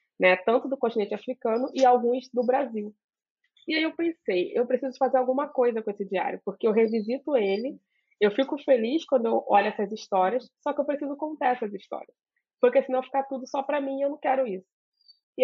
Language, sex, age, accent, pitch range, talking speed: Portuguese, female, 20-39, Brazilian, 200-255 Hz, 200 wpm